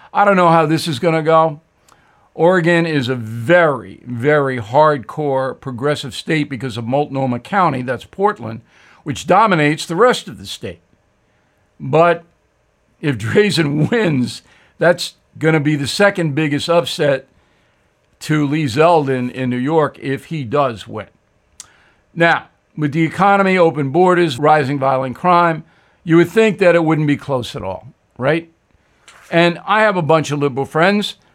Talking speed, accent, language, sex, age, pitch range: 150 wpm, American, English, male, 60-79, 140-185 Hz